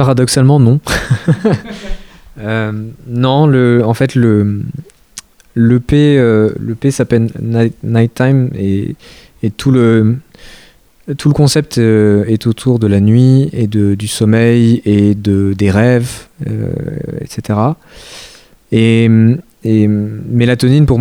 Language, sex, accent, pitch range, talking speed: French, male, French, 105-125 Hz, 125 wpm